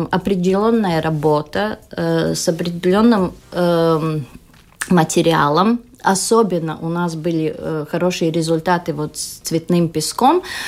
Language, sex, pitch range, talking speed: Russian, female, 165-210 Hz, 95 wpm